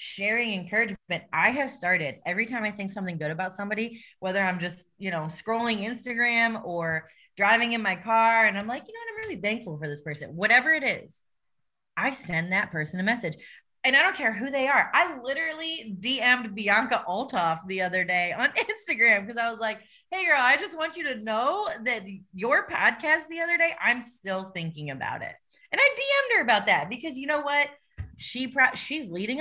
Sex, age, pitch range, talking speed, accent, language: female, 20-39, 180-265 Hz, 200 wpm, American, English